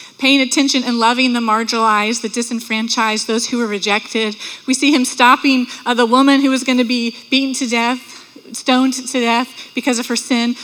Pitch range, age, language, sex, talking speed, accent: 235-280 Hz, 30-49, English, female, 190 wpm, American